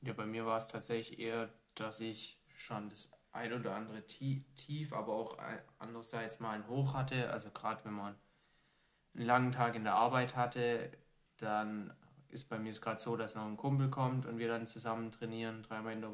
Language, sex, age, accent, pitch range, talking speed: German, male, 20-39, German, 105-115 Hz, 195 wpm